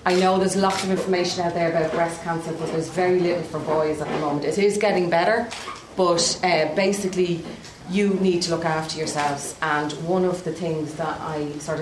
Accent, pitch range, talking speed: Irish, 165-215 Hz, 210 wpm